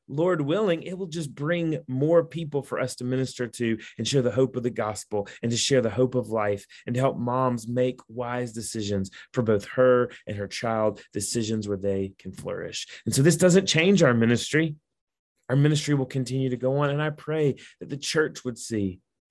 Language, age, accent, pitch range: English, 30-49, American, 110-145 Hz